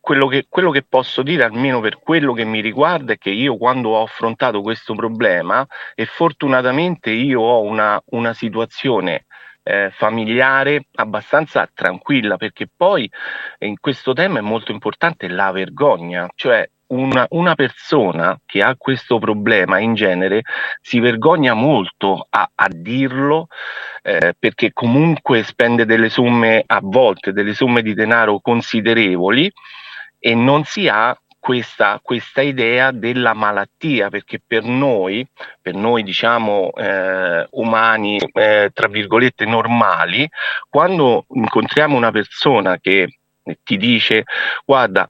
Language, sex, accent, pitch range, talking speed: Italian, male, native, 110-130 Hz, 130 wpm